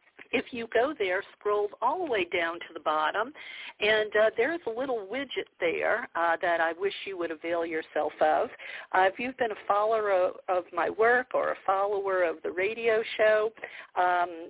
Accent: American